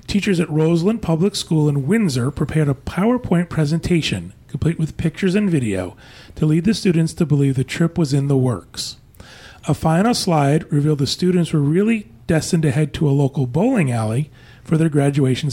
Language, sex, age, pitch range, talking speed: English, male, 40-59, 135-170 Hz, 180 wpm